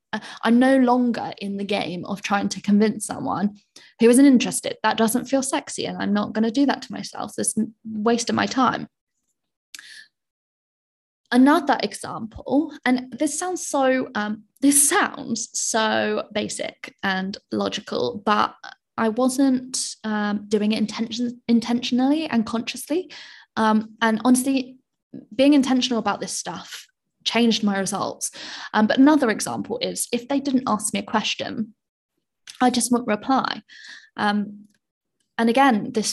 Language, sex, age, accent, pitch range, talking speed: English, female, 10-29, British, 210-260 Hz, 145 wpm